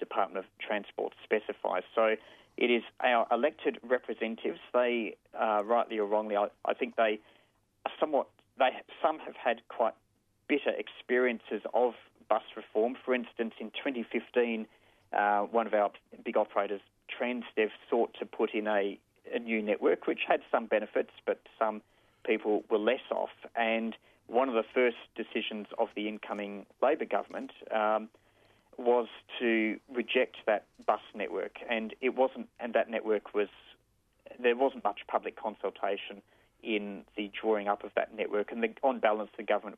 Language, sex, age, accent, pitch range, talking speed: English, male, 40-59, Australian, 105-125 Hz, 155 wpm